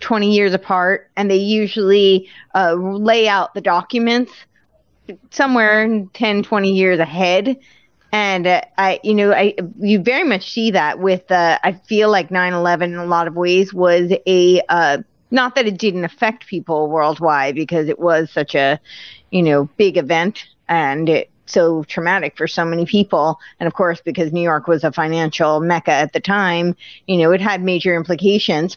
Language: English